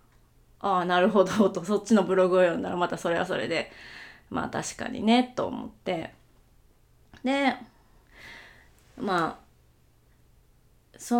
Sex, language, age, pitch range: female, Japanese, 20-39, 185-255 Hz